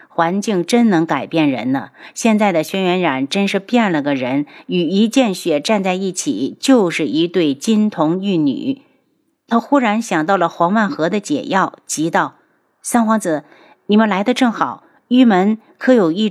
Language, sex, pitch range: Chinese, female, 175-240 Hz